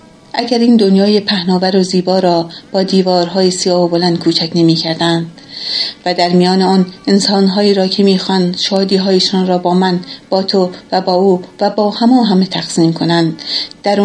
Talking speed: 165 wpm